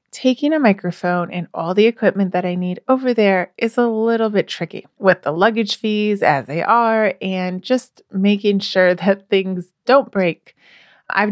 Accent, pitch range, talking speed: American, 185-245 Hz, 175 wpm